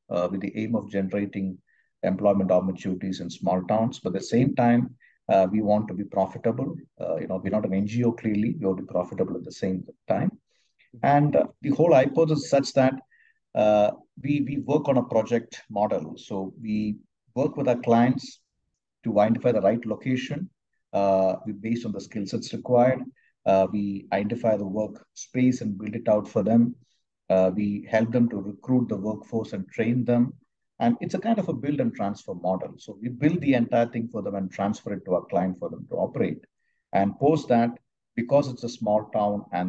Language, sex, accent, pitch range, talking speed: English, male, Indian, 100-125 Hz, 200 wpm